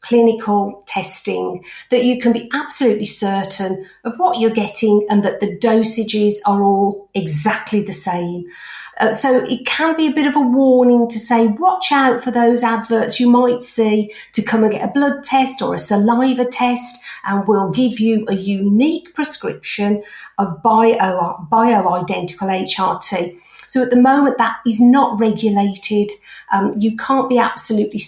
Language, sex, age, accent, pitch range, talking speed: English, female, 50-69, British, 195-235 Hz, 160 wpm